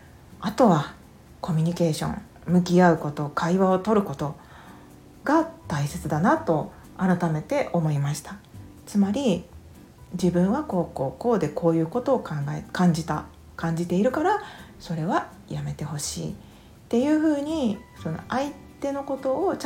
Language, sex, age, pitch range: Japanese, female, 40-59, 170-265 Hz